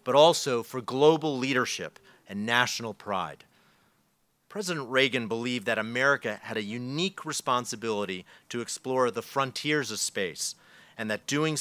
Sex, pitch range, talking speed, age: male, 105-135 Hz, 135 wpm, 40-59